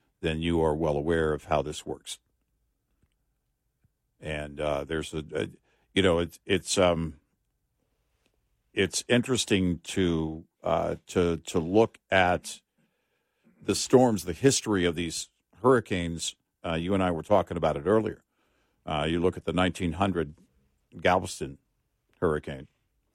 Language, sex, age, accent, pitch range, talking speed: English, male, 60-79, American, 80-95 Hz, 130 wpm